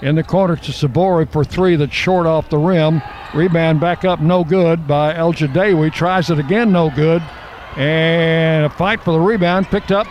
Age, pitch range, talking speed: 60-79, 160-195 Hz, 195 wpm